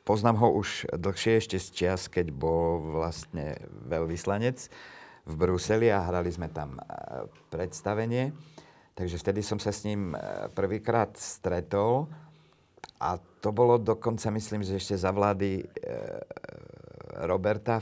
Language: Slovak